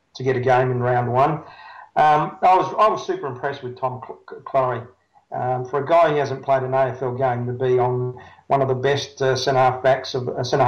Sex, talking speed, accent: male, 235 wpm, Australian